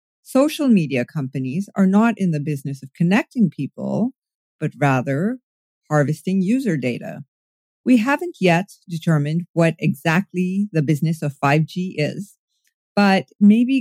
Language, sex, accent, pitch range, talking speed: English, female, American, 165-220 Hz, 125 wpm